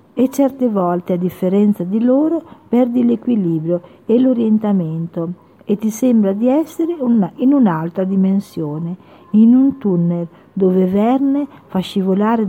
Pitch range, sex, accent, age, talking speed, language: 180-235 Hz, female, native, 50-69, 125 wpm, Italian